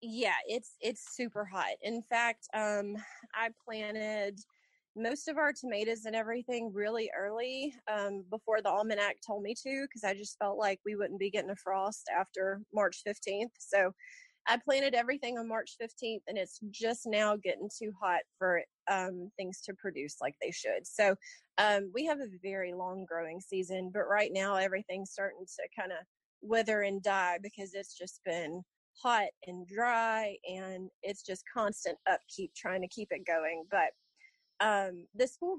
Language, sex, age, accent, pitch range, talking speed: English, female, 30-49, American, 195-235 Hz, 170 wpm